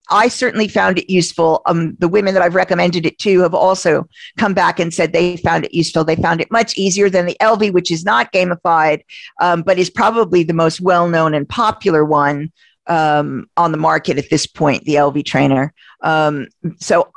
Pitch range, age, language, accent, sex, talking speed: 165-220 Hz, 50-69, English, American, female, 200 wpm